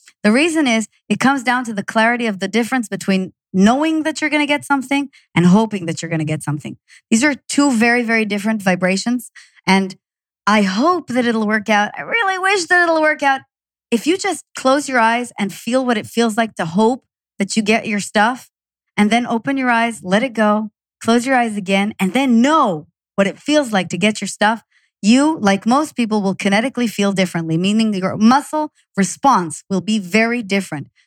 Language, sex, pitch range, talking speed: English, male, 195-255 Hz, 205 wpm